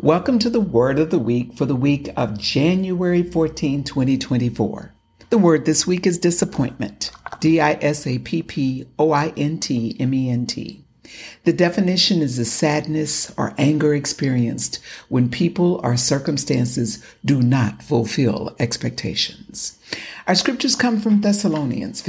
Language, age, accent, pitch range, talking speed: English, 60-79, American, 135-190 Hz, 115 wpm